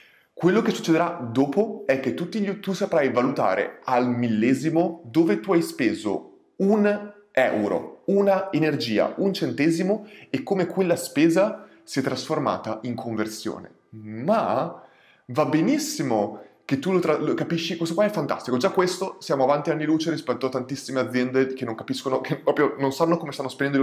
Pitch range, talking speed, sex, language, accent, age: 125-175 Hz, 160 wpm, male, Italian, native, 30-49